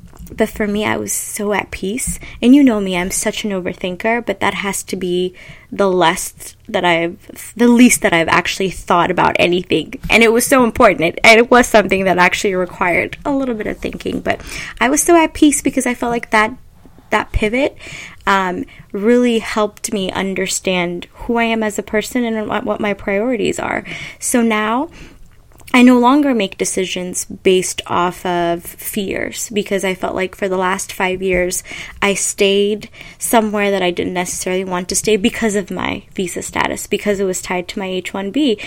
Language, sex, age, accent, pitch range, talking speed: English, female, 10-29, American, 185-235 Hz, 190 wpm